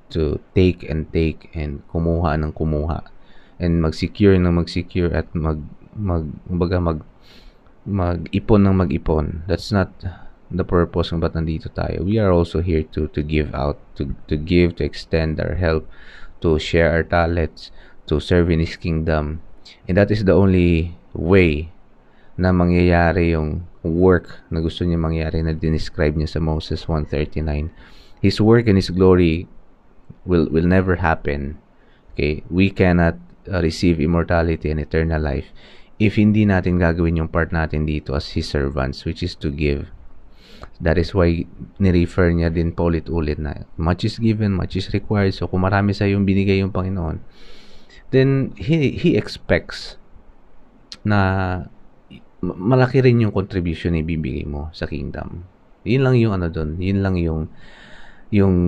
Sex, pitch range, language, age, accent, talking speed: male, 80-95 Hz, English, 20-39, Filipino, 155 wpm